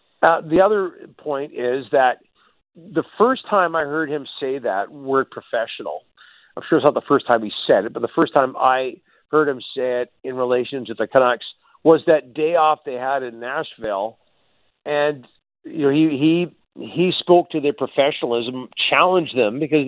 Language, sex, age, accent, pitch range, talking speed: English, male, 50-69, American, 125-160 Hz, 185 wpm